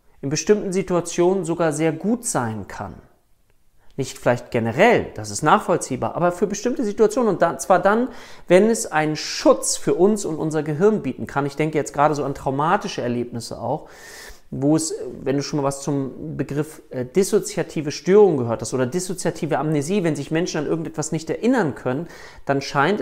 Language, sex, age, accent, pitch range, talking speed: German, male, 40-59, German, 145-190 Hz, 175 wpm